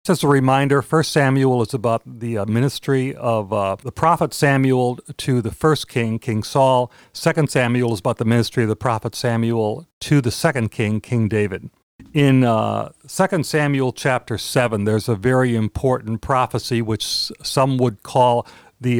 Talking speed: 165 wpm